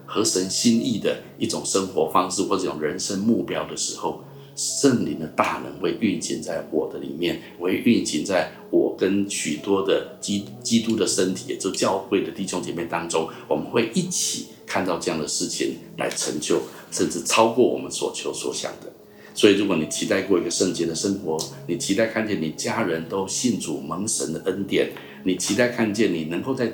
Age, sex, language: 50-69, male, Chinese